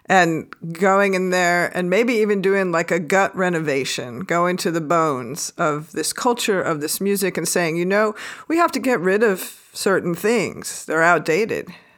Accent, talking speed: American, 180 wpm